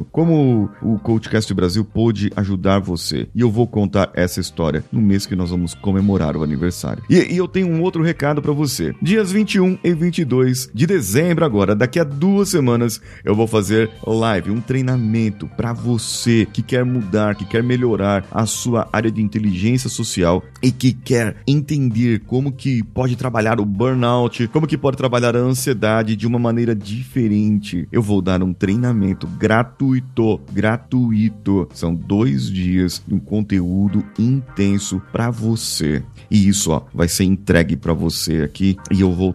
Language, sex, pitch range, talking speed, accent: Portuguese, male, 95-120 Hz, 165 wpm, Brazilian